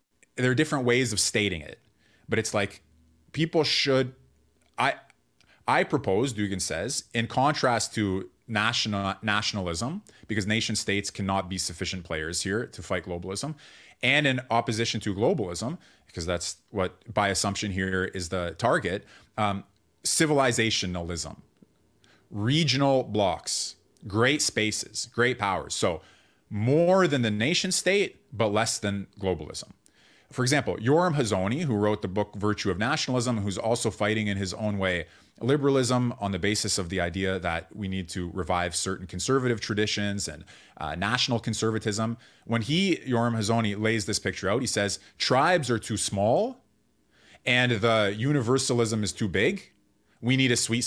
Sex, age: male, 30-49